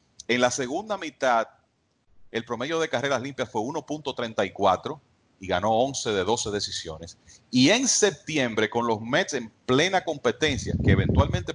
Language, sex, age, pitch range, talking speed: English, male, 40-59, 110-140 Hz, 145 wpm